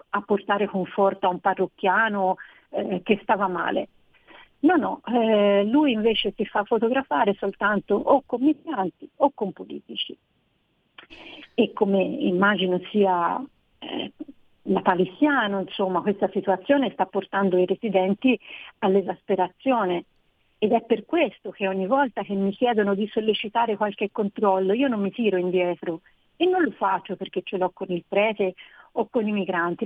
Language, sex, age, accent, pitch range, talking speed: Italian, female, 40-59, native, 190-235 Hz, 145 wpm